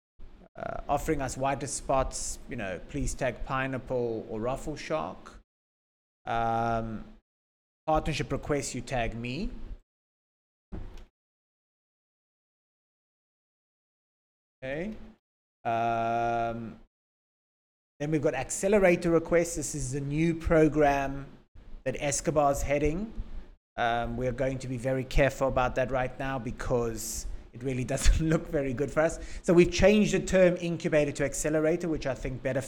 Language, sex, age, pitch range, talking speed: English, male, 30-49, 130-160 Hz, 125 wpm